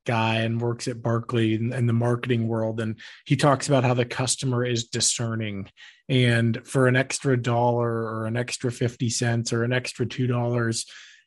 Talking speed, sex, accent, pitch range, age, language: 175 wpm, male, American, 115-130 Hz, 20-39, English